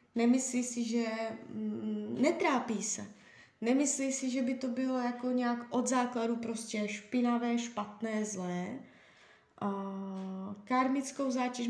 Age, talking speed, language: 20-39, 110 wpm, Czech